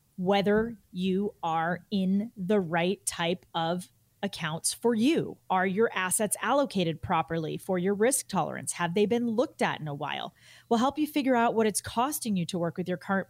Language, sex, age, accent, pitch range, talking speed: English, female, 30-49, American, 175-225 Hz, 190 wpm